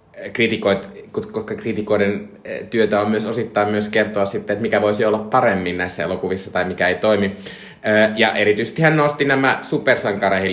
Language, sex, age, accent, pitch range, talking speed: Finnish, male, 20-39, native, 100-125 Hz, 155 wpm